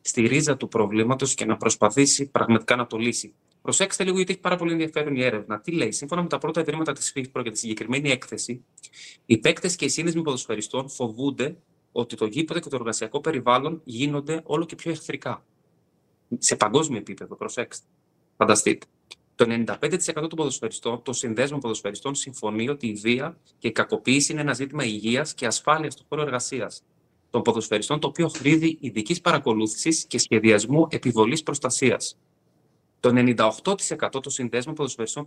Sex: male